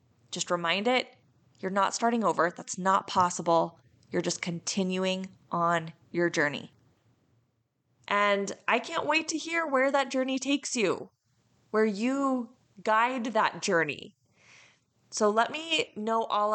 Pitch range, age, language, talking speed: 175-225 Hz, 20-39, English, 135 wpm